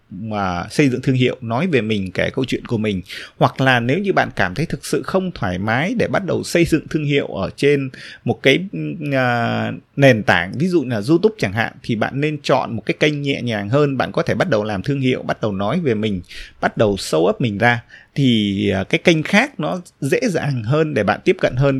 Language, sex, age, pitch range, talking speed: Vietnamese, male, 20-39, 110-160 Hz, 235 wpm